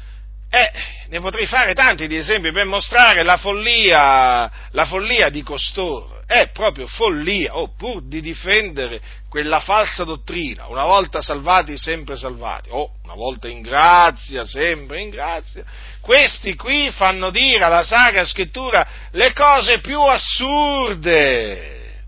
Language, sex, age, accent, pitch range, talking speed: Italian, male, 50-69, native, 155-235 Hz, 135 wpm